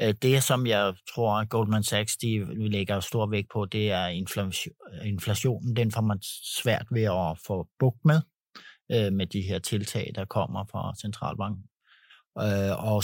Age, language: 60-79, Danish